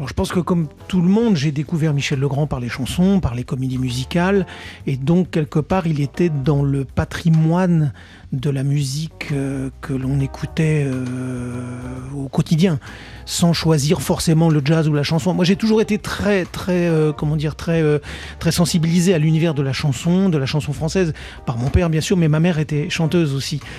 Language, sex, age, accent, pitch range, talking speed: French, male, 40-59, French, 140-175 Hz, 200 wpm